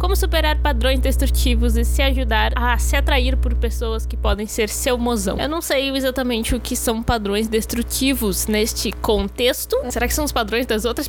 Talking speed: 190 wpm